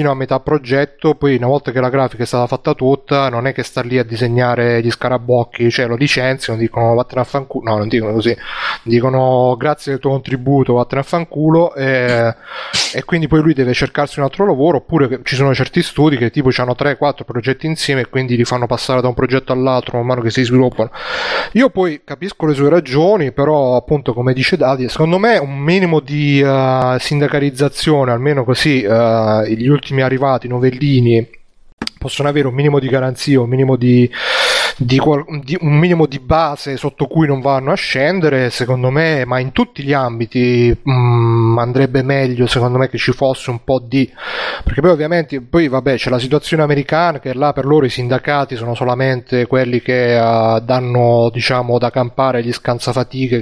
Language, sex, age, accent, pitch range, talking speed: Italian, male, 30-49, native, 125-145 Hz, 185 wpm